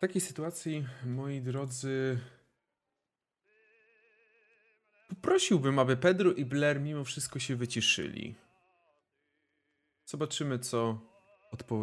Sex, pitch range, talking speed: male, 125-170 Hz, 85 wpm